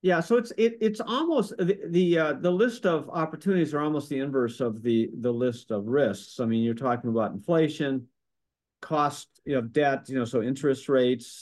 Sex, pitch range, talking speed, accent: male, 125-160 Hz, 205 wpm, American